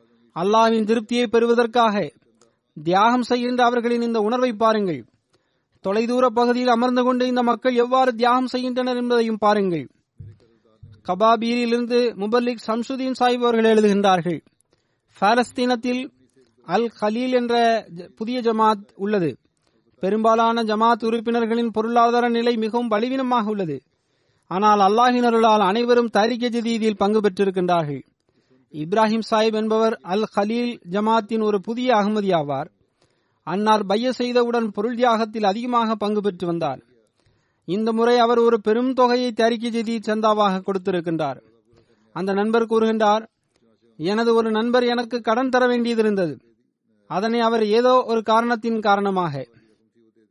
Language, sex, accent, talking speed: Tamil, male, native, 105 wpm